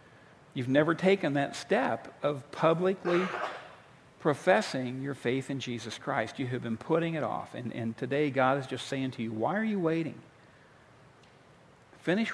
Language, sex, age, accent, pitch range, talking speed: English, male, 50-69, American, 130-175 Hz, 160 wpm